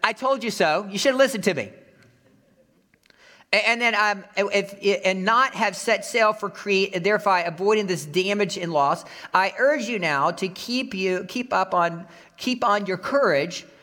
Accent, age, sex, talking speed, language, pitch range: American, 50-69, male, 180 wpm, English, 175-220 Hz